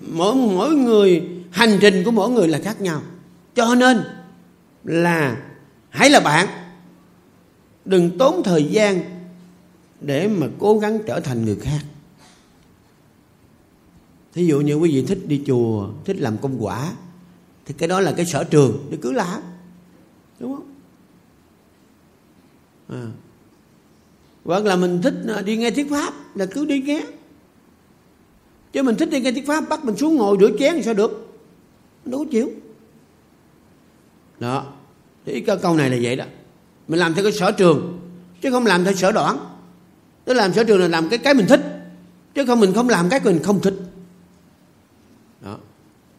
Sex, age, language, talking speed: male, 50-69, Vietnamese, 160 wpm